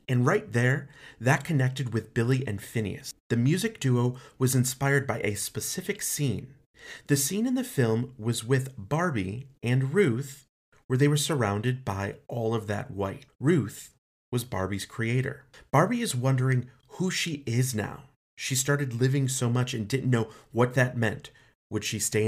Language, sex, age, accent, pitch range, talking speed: English, male, 30-49, American, 110-140 Hz, 165 wpm